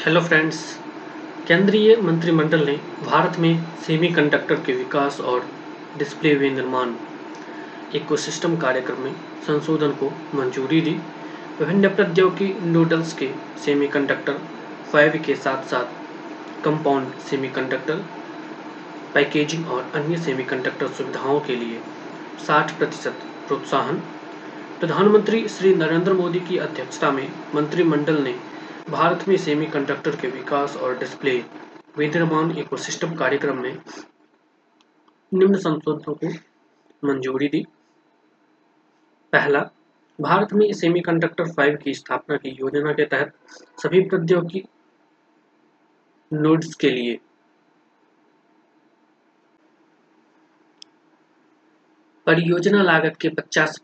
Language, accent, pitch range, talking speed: Hindi, native, 150-225 Hz, 95 wpm